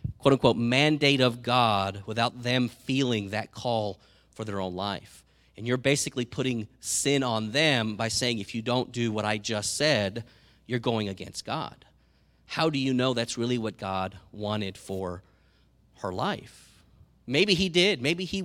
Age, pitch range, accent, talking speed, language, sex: 30-49, 105-130 Hz, American, 165 wpm, English, male